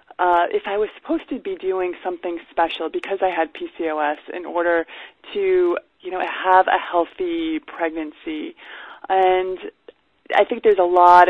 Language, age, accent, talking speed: English, 20-39, American, 155 wpm